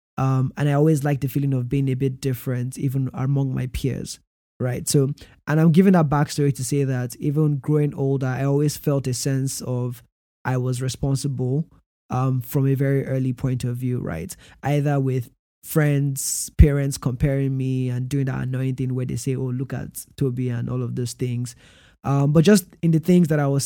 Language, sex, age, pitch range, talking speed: English, male, 20-39, 130-145 Hz, 200 wpm